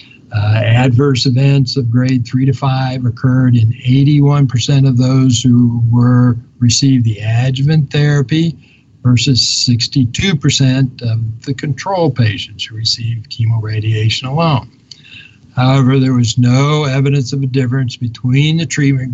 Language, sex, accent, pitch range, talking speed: English, male, American, 120-140 Hz, 120 wpm